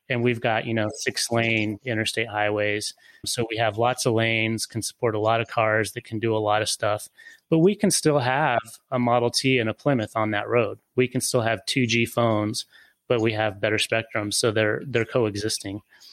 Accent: American